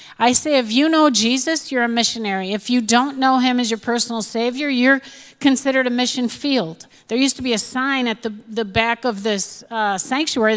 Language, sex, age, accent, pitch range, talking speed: English, female, 50-69, American, 230-265 Hz, 210 wpm